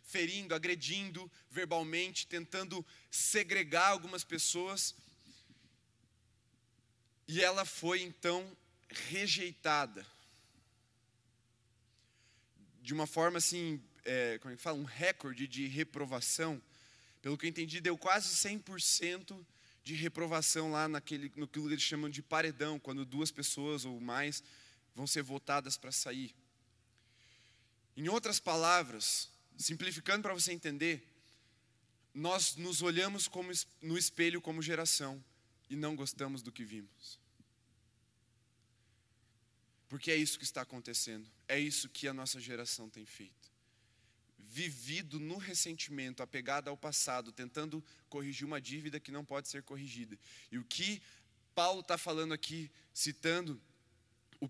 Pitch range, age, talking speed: 120-165 Hz, 20-39, 120 wpm